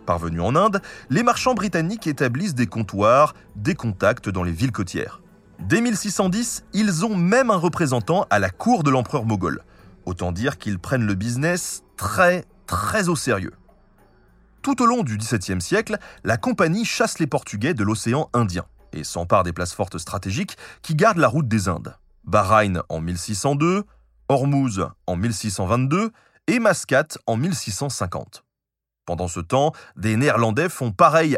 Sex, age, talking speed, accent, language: male, 30-49, 155 wpm, French, French